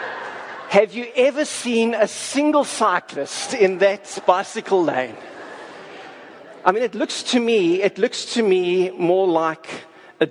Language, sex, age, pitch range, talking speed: English, male, 50-69, 140-210 Hz, 140 wpm